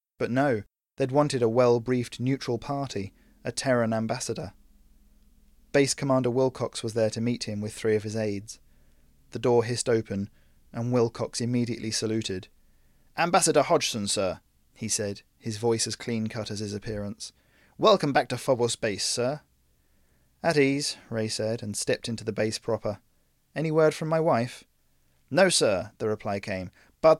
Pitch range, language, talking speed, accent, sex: 105-130 Hz, English, 155 wpm, British, male